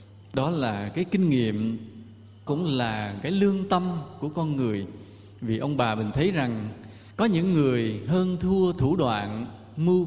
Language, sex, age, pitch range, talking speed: Vietnamese, male, 20-39, 110-160 Hz, 160 wpm